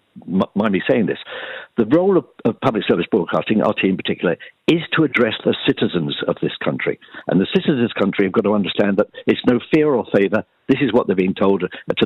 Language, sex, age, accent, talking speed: English, male, 60-79, British, 225 wpm